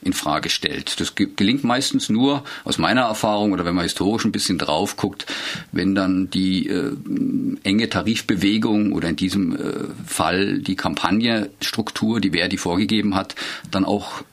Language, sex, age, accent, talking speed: German, male, 50-69, German, 155 wpm